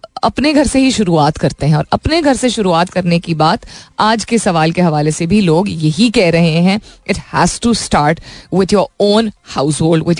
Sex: female